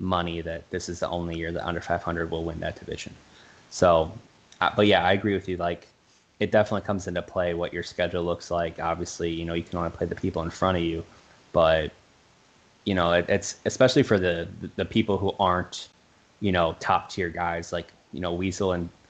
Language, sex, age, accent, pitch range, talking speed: English, male, 20-39, American, 85-95 Hz, 215 wpm